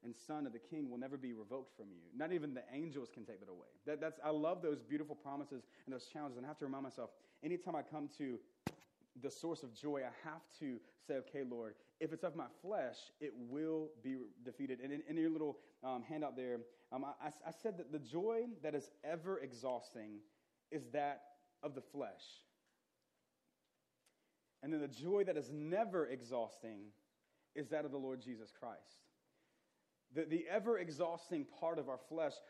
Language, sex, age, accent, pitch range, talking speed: English, male, 30-49, American, 130-170 Hz, 190 wpm